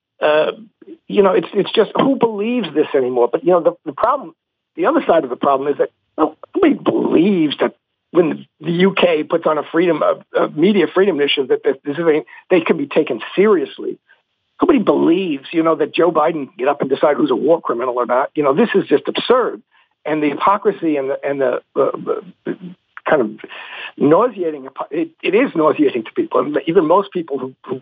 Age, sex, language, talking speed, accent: 60-79, male, English, 205 wpm, American